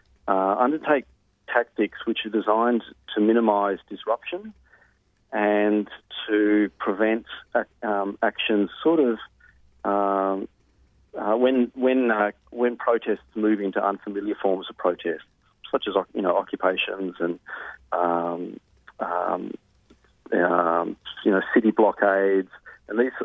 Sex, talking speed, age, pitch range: male, 115 wpm, 40-59, 95-110 Hz